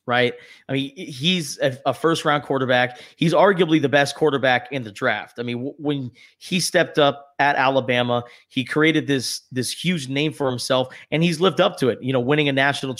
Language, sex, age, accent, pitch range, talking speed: English, male, 30-49, American, 125-150 Hz, 205 wpm